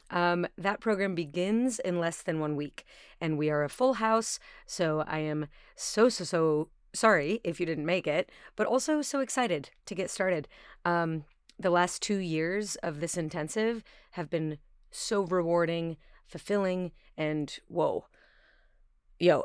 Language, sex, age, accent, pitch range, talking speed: English, female, 30-49, American, 155-205 Hz, 155 wpm